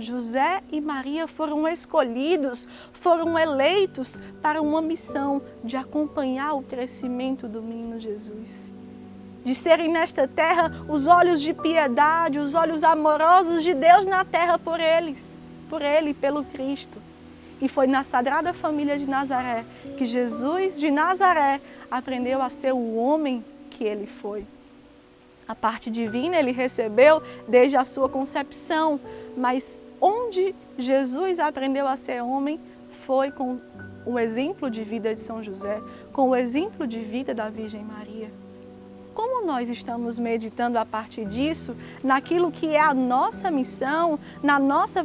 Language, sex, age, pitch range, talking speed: Portuguese, female, 20-39, 250-325 Hz, 140 wpm